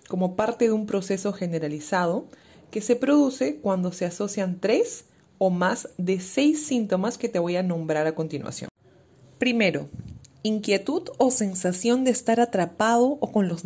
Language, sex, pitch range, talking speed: Spanish, female, 155-220 Hz, 155 wpm